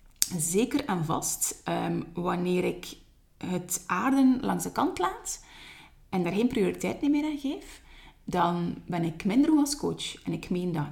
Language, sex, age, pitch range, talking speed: Dutch, female, 30-49, 160-220 Hz, 165 wpm